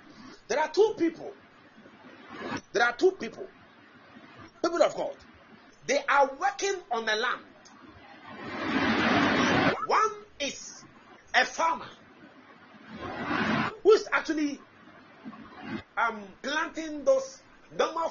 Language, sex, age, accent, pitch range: Japanese, male, 40-59, Nigerian, 255-385 Hz